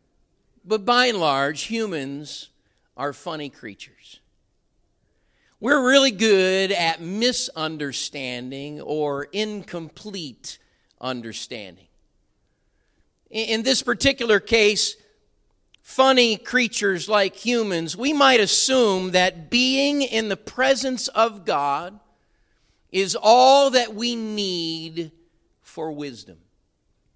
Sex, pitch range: male, 155-245 Hz